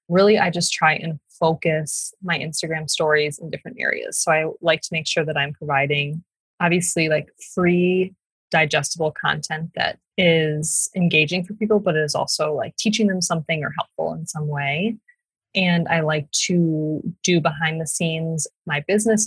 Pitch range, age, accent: 155-185 Hz, 20-39, American